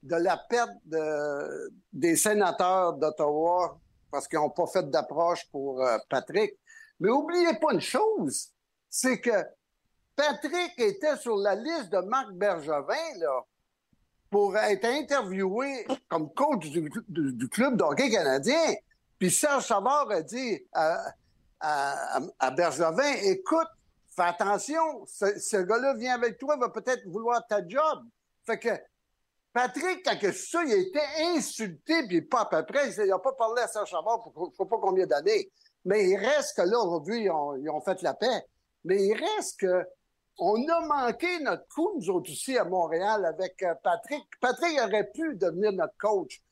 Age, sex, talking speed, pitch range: 60-79, male, 165 wpm, 185-300 Hz